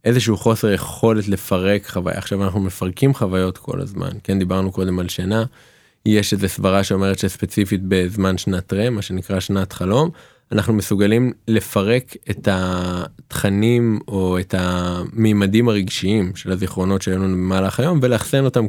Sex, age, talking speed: male, 20-39, 140 wpm